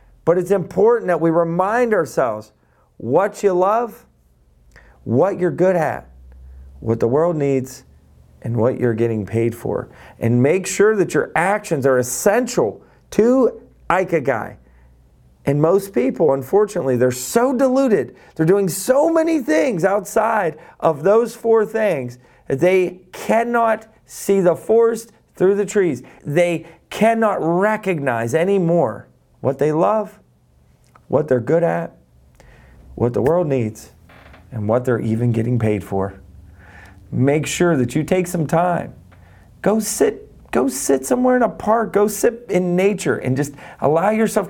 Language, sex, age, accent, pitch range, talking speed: English, male, 40-59, American, 120-200 Hz, 140 wpm